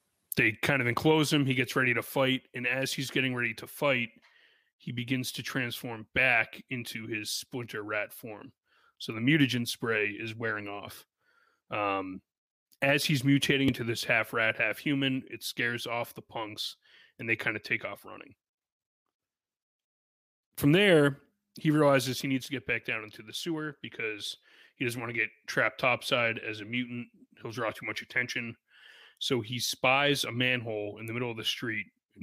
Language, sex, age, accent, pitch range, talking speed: English, male, 30-49, American, 115-140 Hz, 180 wpm